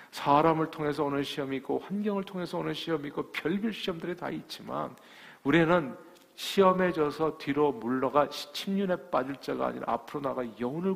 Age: 40-59